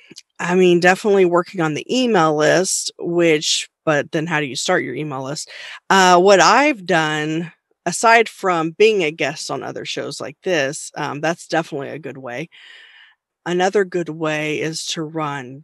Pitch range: 150-185 Hz